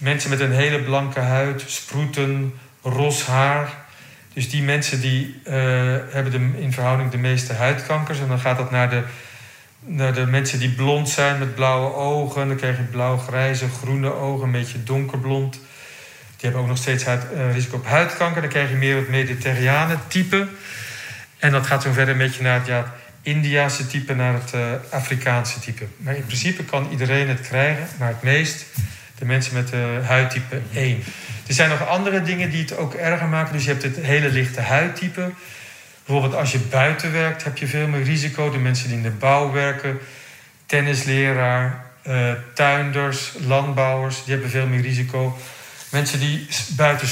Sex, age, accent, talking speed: male, 40-59, Dutch, 180 wpm